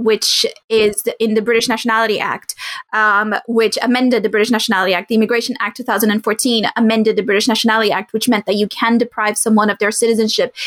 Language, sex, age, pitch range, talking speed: English, female, 20-39, 215-255 Hz, 190 wpm